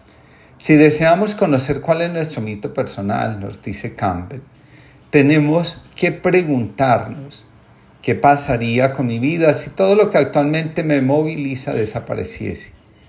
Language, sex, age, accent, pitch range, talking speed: Spanish, male, 40-59, Colombian, 115-145 Hz, 125 wpm